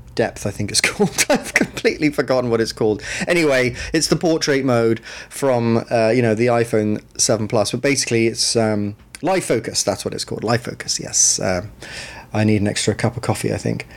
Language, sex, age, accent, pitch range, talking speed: English, male, 30-49, British, 110-135 Hz, 200 wpm